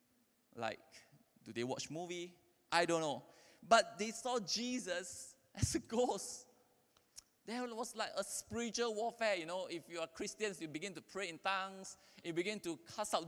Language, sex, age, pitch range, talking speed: English, male, 20-39, 120-190 Hz, 170 wpm